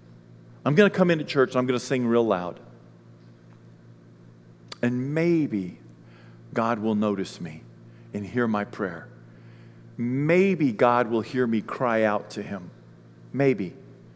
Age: 50-69